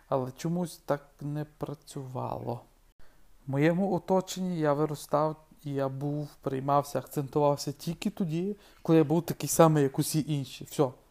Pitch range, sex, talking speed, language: 140-155 Hz, male, 135 wpm, Ukrainian